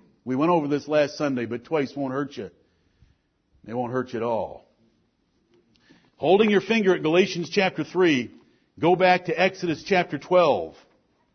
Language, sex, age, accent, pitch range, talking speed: English, male, 50-69, American, 160-230 Hz, 160 wpm